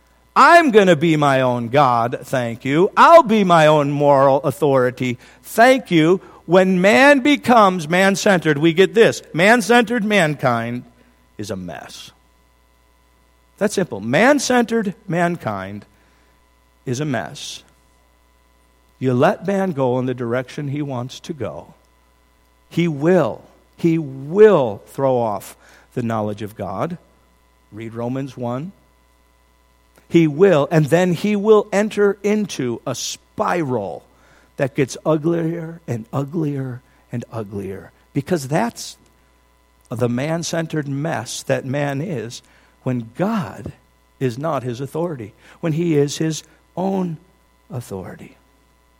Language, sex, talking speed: English, male, 120 wpm